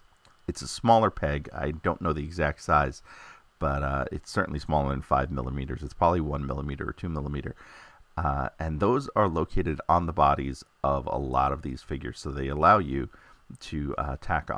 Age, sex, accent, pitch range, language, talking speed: 40-59, male, American, 70-85 Hz, English, 190 wpm